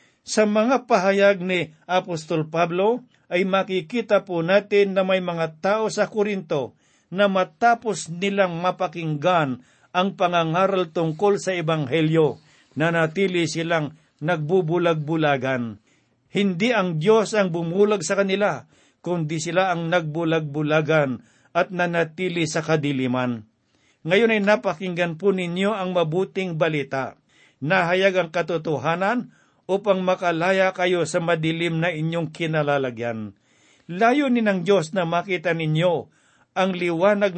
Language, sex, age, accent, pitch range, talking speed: Filipino, male, 50-69, native, 155-195 Hz, 115 wpm